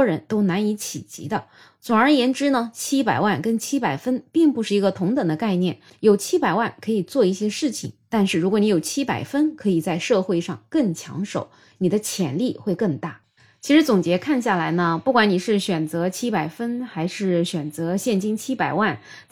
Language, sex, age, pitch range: Chinese, female, 20-39, 180-255 Hz